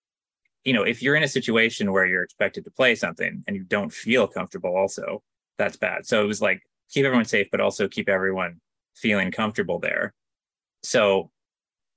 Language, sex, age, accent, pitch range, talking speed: English, male, 30-49, American, 95-120 Hz, 180 wpm